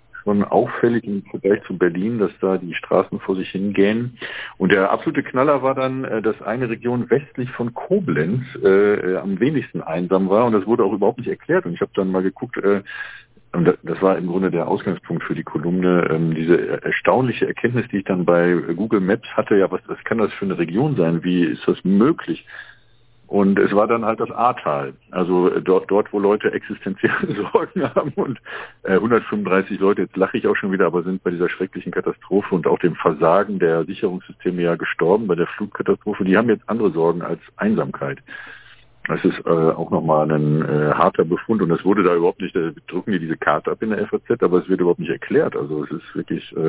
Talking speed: 200 wpm